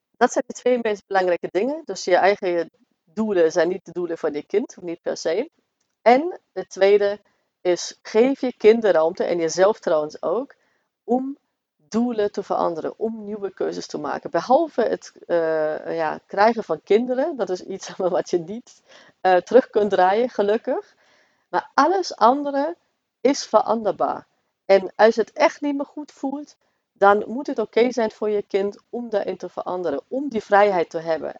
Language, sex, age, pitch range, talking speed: Dutch, female, 40-59, 175-245 Hz, 175 wpm